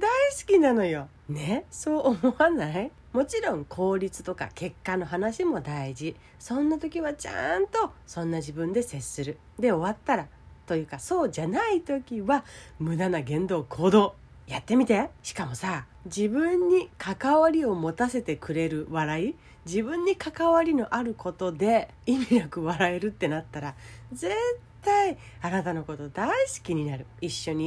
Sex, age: female, 40-59